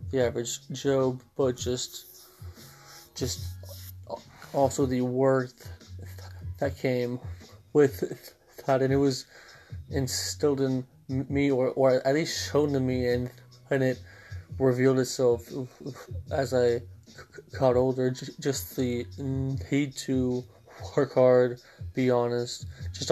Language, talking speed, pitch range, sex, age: English, 115 wpm, 100-135 Hz, male, 20-39